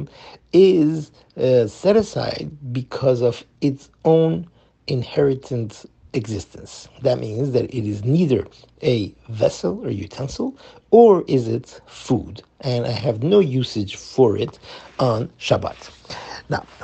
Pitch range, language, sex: 115-155 Hz, English, male